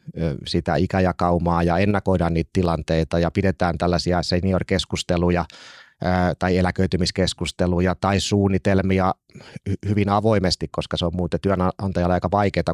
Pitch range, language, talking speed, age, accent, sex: 85-95 Hz, Finnish, 110 wpm, 30-49, native, male